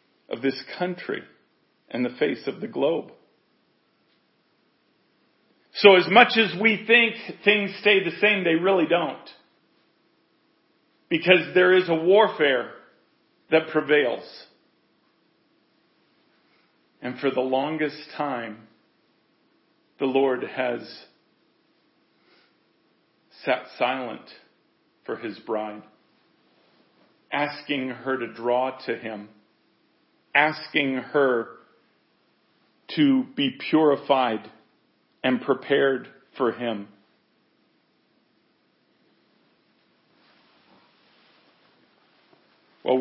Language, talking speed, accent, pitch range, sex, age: English, 80 wpm, American, 115-165 Hz, male, 40-59